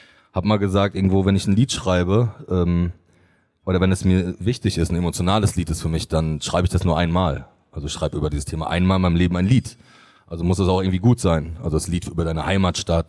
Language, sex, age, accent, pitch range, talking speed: German, male, 30-49, German, 90-120 Hz, 245 wpm